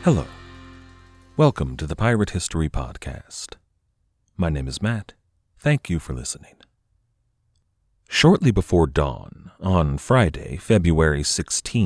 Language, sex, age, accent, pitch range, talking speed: English, male, 40-59, American, 75-100 Hz, 110 wpm